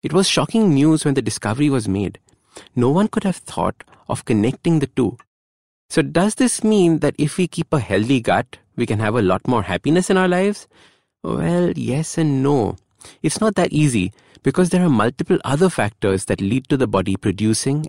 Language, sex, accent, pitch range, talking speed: English, male, Indian, 100-150 Hz, 200 wpm